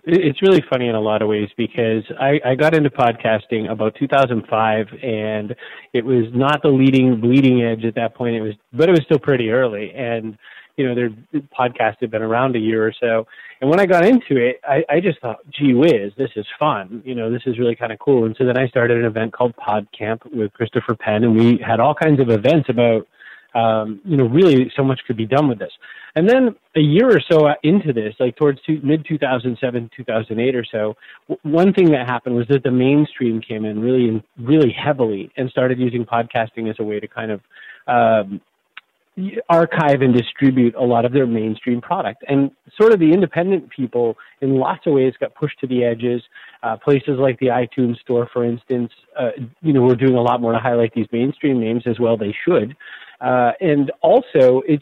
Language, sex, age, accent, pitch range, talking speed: English, male, 30-49, American, 115-145 Hz, 210 wpm